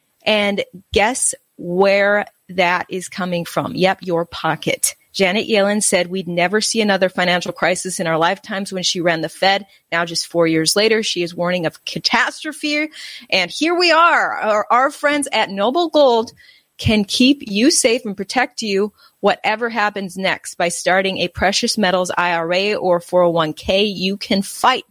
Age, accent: 30-49, American